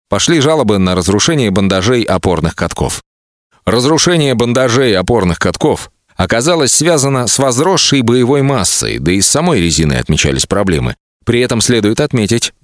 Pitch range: 85-125 Hz